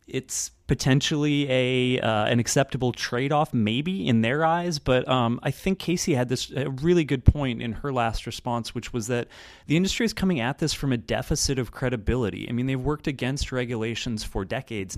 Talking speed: 195 wpm